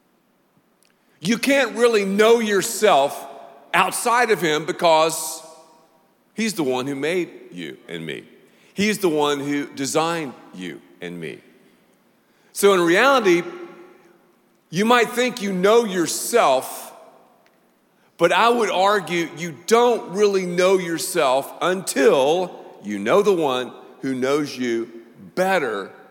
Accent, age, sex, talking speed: American, 50-69, male, 120 wpm